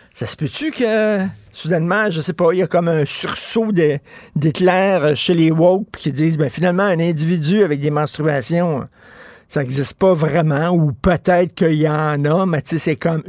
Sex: male